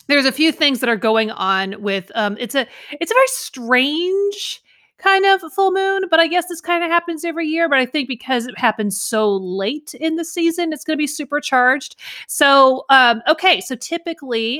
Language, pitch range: English, 215-290 Hz